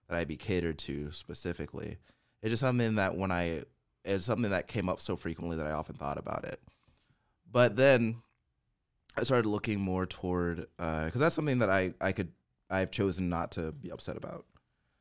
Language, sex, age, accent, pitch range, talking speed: English, male, 20-39, American, 80-100 Hz, 190 wpm